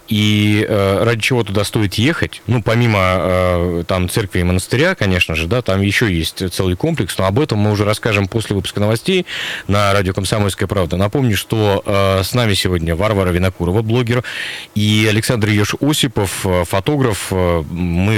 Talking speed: 155 wpm